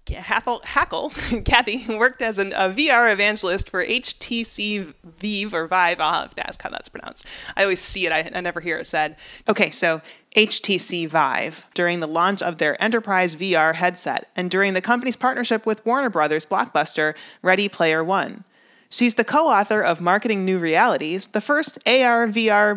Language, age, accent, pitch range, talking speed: English, 30-49, American, 175-235 Hz, 170 wpm